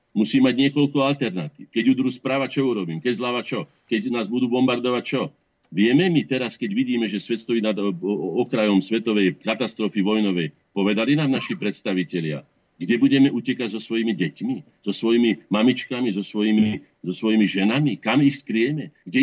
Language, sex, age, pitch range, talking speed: Slovak, male, 50-69, 100-130 Hz, 160 wpm